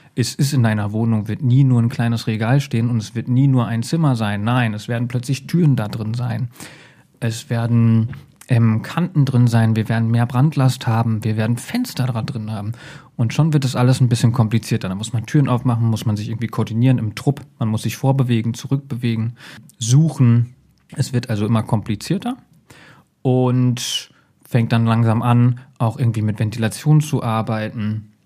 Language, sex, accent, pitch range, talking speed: German, male, German, 115-140 Hz, 185 wpm